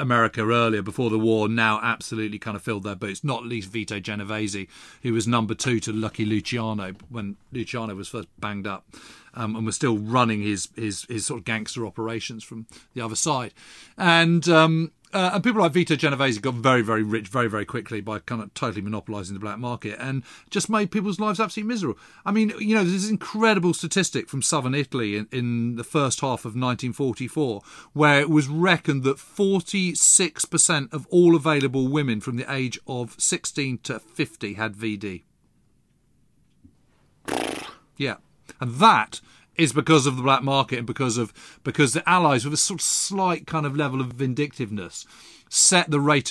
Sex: male